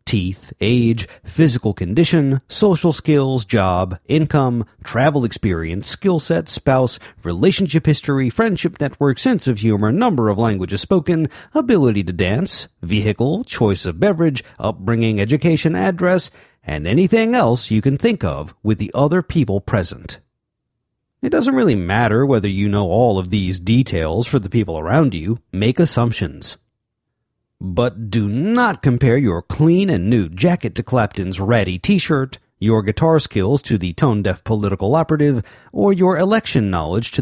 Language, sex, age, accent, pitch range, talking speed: English, male, 50-69, American, 100-155 Hz, 145 wpm